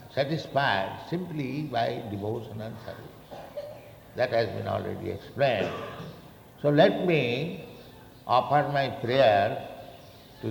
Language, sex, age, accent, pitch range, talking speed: English, male, 60-79, Indian, 115-145 Hz, 105 wpm